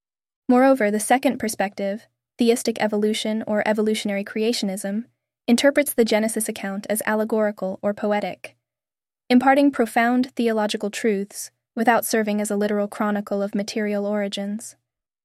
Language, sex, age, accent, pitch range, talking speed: English, female, 10-29, American, 205-230 Hz, 120 wpm